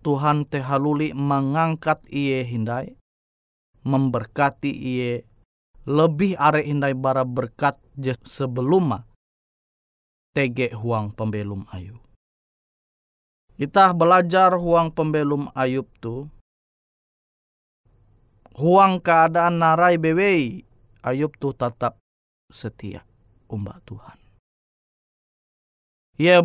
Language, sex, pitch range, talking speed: Indonesian, male, 115-160 Hz, 75 wpm